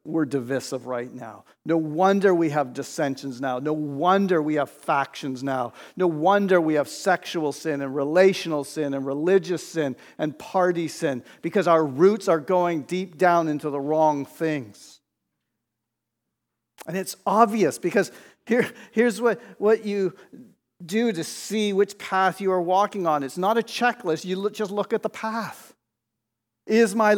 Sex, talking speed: male, 155 wpm